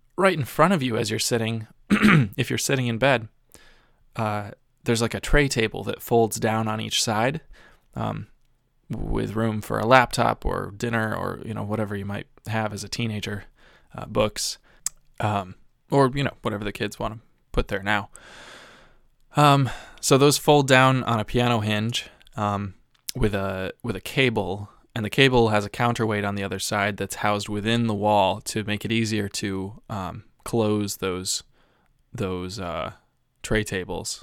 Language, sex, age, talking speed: English, male, 20-39, 175 wpm